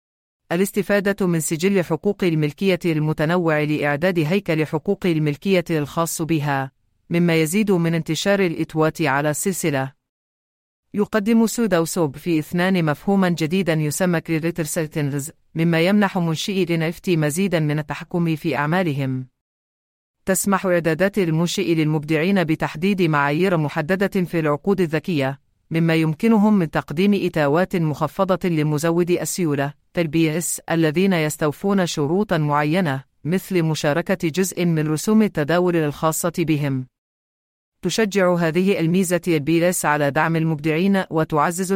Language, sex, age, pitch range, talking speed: English, female, 40-59, 150-185 Hz, 110 wpm